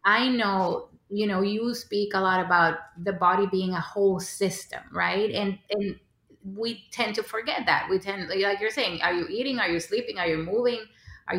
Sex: female